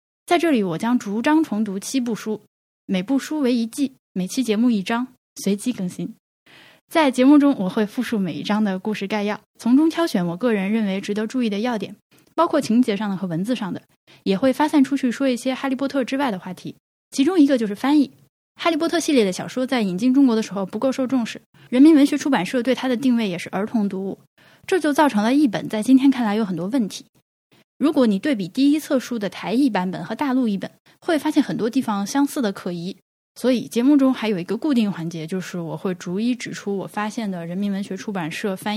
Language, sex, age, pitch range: Chinese, female, 10-29, 195-265 Hz